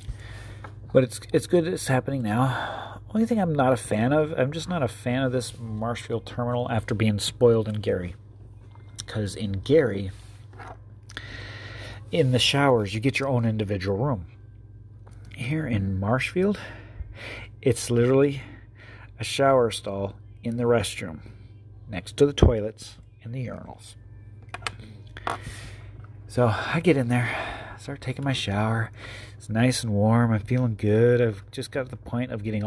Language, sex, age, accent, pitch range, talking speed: English, male, 40-59, American, 105-125 Hz, 150 wpm